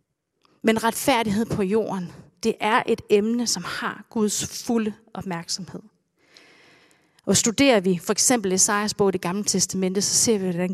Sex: female